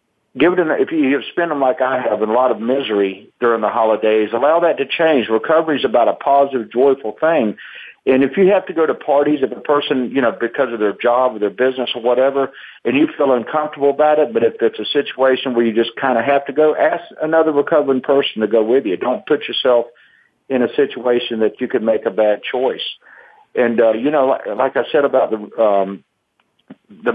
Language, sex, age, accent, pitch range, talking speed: English, male, 50-69, American, 115-155 Hz, 230 wpm